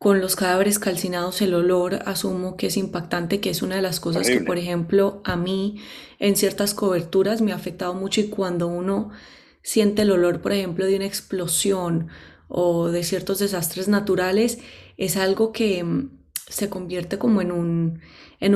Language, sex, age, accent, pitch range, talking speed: English, female, 20-39, Colombian, 185-215 Hz, 170 wpm